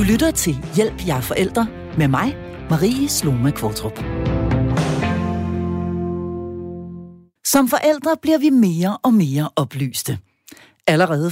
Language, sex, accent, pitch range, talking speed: Danish, female, native, 140-240 Hz, 100 wpm